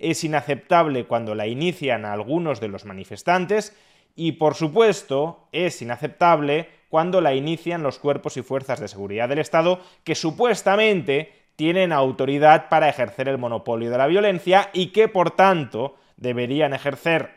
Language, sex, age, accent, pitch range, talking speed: Spanish, male, 30-49, Spanish, 130-175 Hz, 150 wpm